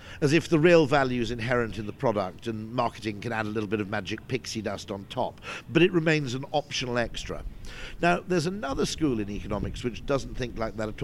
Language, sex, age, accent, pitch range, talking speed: English, male, 50-69, British, 105-140 Hz, 225 wpm